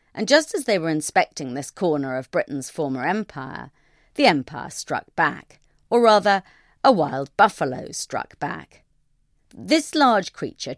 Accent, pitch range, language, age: British, 140-220 Hz, English, 40-59